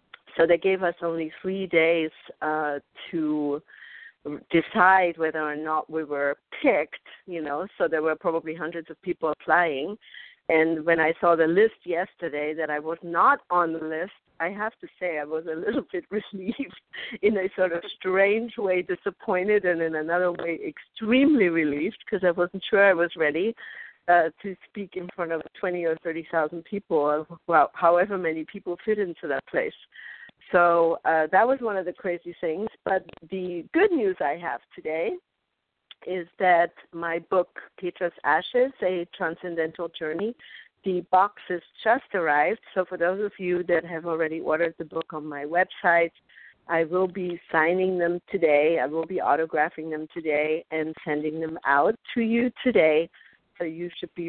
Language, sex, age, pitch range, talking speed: English, female, 50-69, 160-190 Hz, 170 wpm